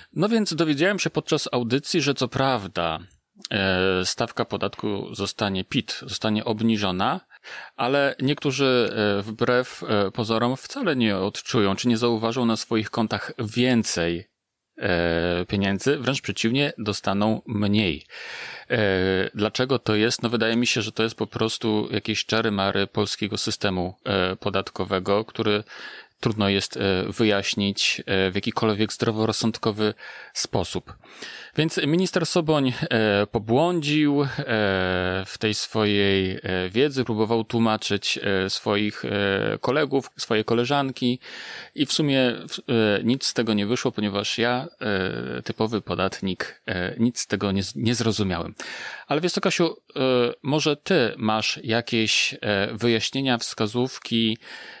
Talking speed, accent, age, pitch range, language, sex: 110 wpm, native, 30-49, 100-125 Hz, Polish, male